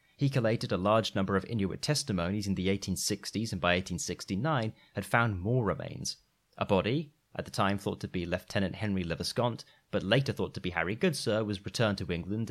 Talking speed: 190 wpm